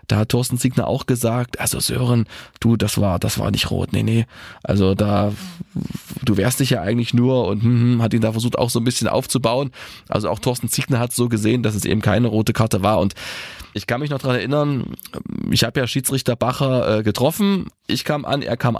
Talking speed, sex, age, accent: 220 wpm, male, 20-39, German